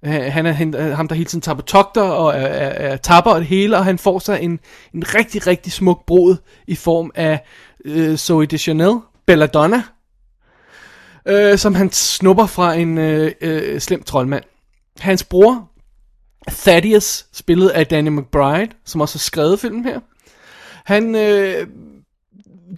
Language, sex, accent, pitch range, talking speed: Danish, male, native, 155-195 Hz, 145 wpm